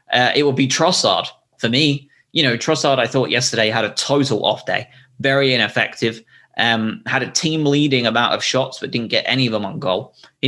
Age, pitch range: 20-39, 110-135 Hz